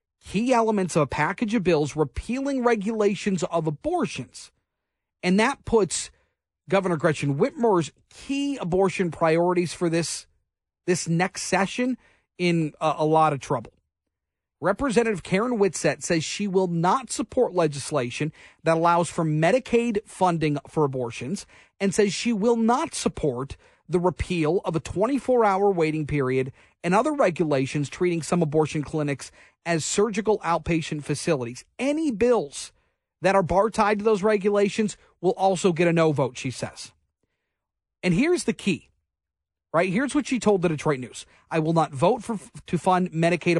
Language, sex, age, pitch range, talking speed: English, male, 40-59, 155-210 Hz, 145 wpm